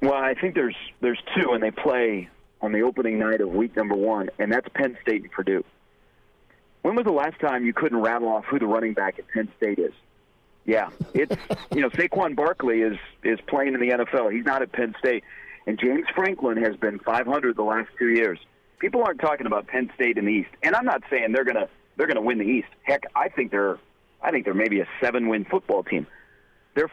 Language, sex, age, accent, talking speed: English, male, 40-59, American, 225 wpm